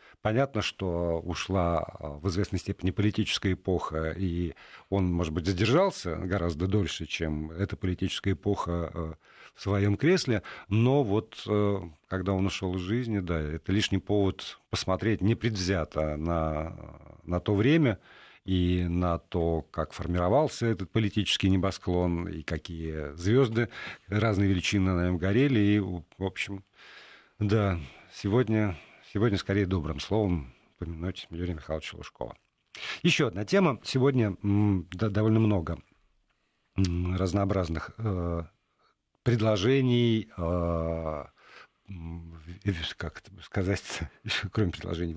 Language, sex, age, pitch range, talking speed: Russian, male, 50-69, 85-110 Hz, 110 wpm